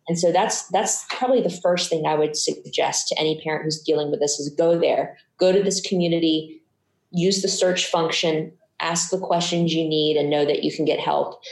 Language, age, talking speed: English, 20-39, 215 wpm